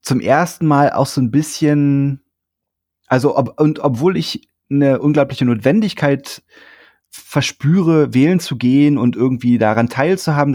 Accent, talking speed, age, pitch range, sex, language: German, 130 wpm, 30-49, 115-150 Hz, male, German